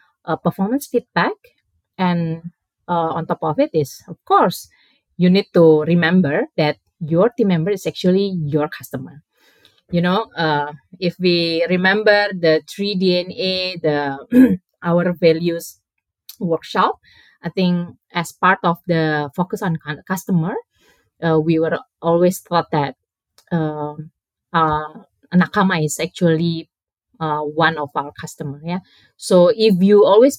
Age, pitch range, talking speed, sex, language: 20-39, 160-195 Hz, 130 wpm, female, Indonesian